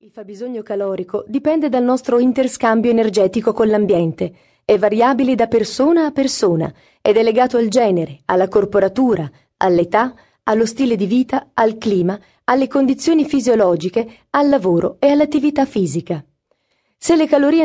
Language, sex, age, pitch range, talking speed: Italian, female, 30-49, 195-265 Hz, 140 wpm